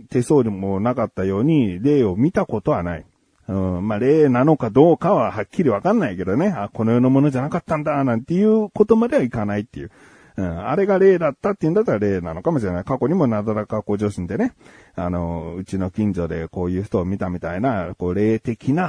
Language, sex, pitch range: Japanese, male, 90-140 Hz